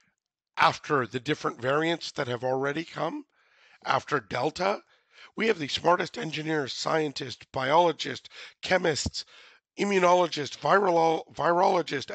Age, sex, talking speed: 50-69, male, 105 wpm